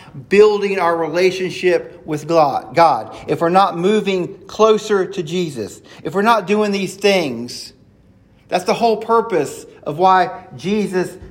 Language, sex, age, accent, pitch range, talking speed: English, male, 40-59, American, 155-195 Hz, 135 wpm